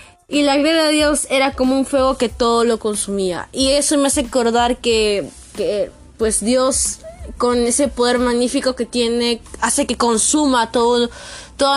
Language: Spanish